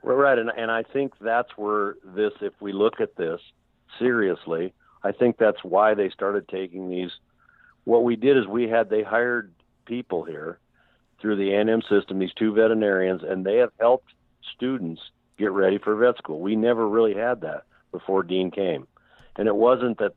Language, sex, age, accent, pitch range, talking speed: English, male, 50-69, American, 95-115 Hz, 185 wpm